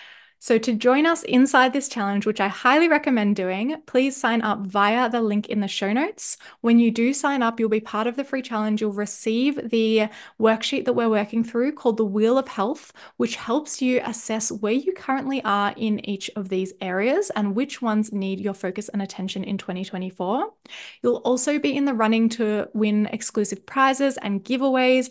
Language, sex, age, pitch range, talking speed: English, female, 10-29, 200-250 Hz, 195 wpm